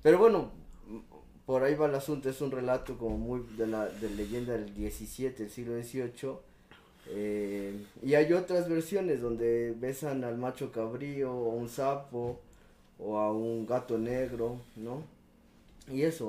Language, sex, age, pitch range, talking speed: Spanish, male, 20-39, 110-130 Hz, 160 wpm